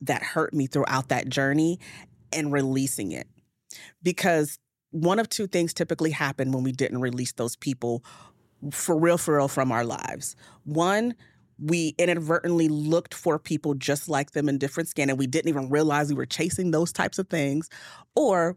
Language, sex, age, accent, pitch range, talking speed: English, female, 30-49, American, 135-160 Hz, 175 wpm